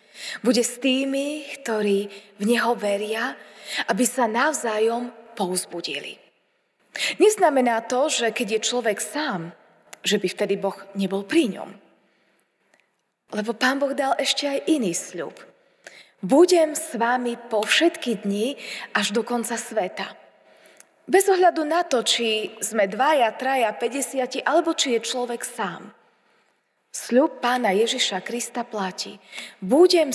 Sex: female